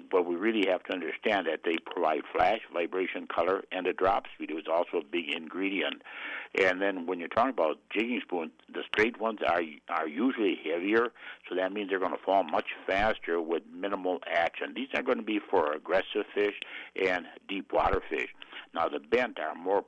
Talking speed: 200 wpm